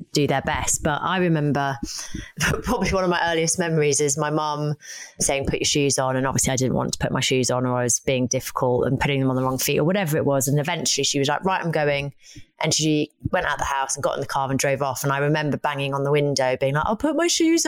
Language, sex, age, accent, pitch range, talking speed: English, female, 20-39, British, 140-180 Hz, 280 wpm